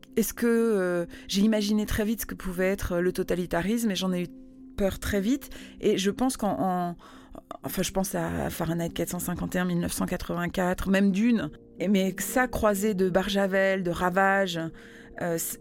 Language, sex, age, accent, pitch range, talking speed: French, female, 30-49, French, 175-210 Hz, 165 wpm